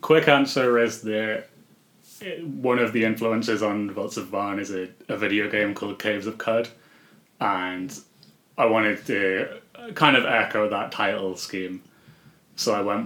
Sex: male